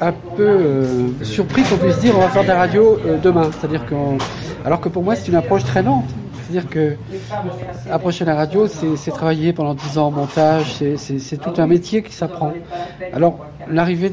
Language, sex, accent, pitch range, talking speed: French, male, French, 150-195 Hz, 205 wpm